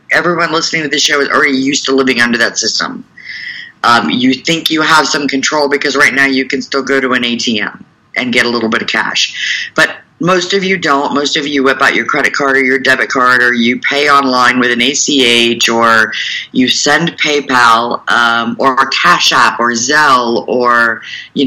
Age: 50-69